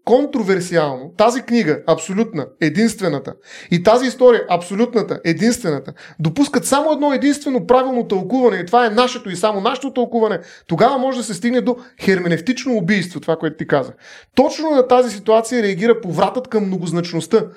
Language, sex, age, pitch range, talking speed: Bulgarian, male, 30-49, 190-250 Hz, 150 wpm